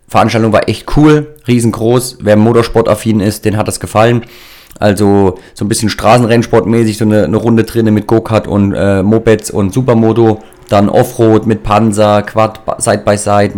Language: German